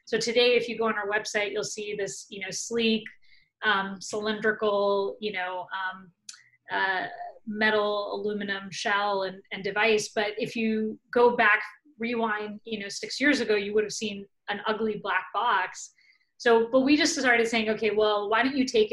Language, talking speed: English, 180 wpm